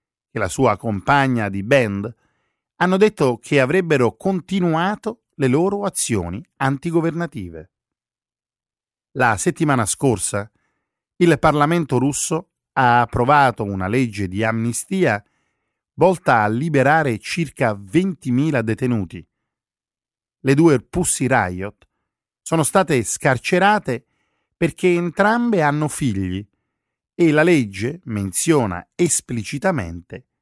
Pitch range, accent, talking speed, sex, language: 105-160 Hz, native, 95 wpm, male, Italian